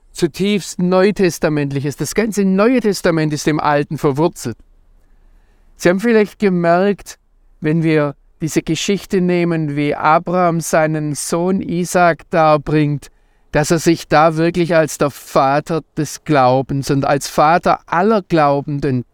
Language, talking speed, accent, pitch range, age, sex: German, 130 wpm, German, 150-195 Hz, 50-69, male